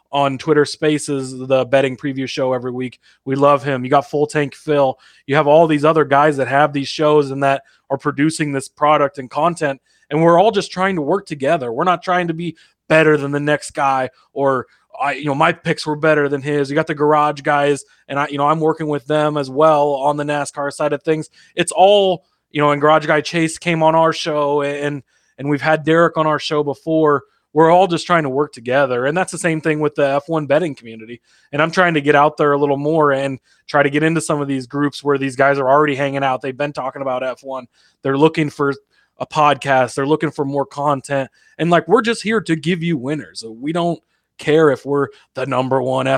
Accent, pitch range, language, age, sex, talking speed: American, 140-160 Hz, English, 20-39, male, 235 wpm